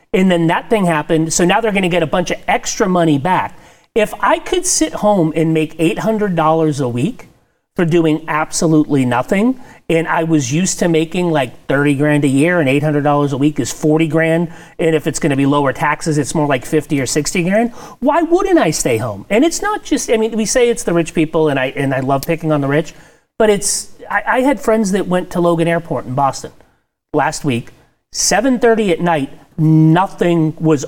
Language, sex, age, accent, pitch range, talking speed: English, male, 40-59, American, 150-210 Hz, 210 wpm